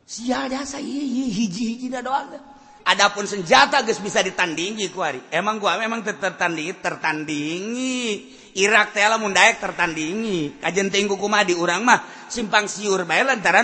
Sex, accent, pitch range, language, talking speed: male, native, 200-260 Hz, Indonesian, 120 wpm